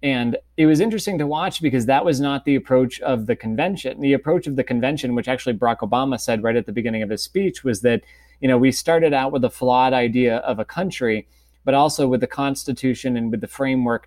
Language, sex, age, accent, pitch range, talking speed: English, male, 20-39, American, 115-135 Hz, 235 wpm